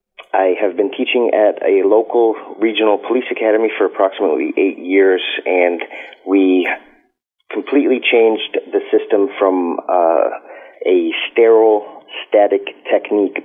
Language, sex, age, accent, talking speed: English, male, 30-49, American, 115 wpm